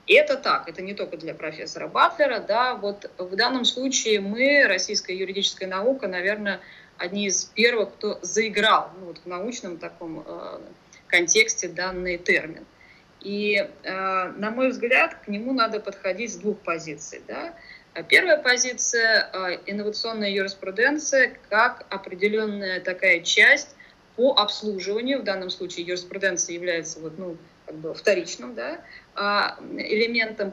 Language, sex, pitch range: Russian, female, 180-240 Hz